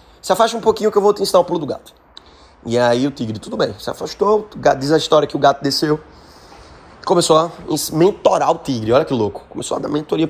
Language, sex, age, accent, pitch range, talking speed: Portuguese, male, 20-39, Brazilian, 125-175 Hz, 240 wpm